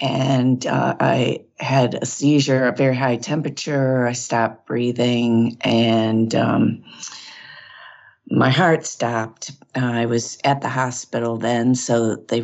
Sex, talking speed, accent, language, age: female, 130 wpm, American, English, 50-69